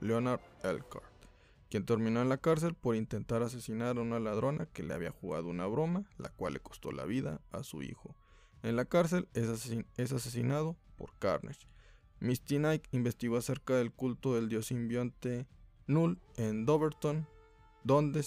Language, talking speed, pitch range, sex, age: Spanish, 165 wpm, 110-145 Hz, male, 20-39